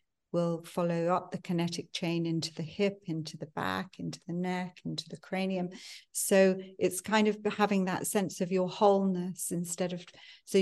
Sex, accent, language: female, British, English